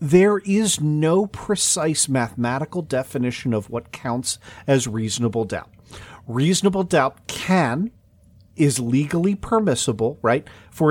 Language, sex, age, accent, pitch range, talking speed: English, male, 40-59, American, 115-170 Hz, 110 wpm